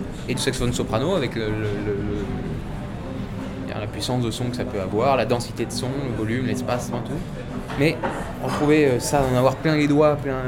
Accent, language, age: French, French, 20-39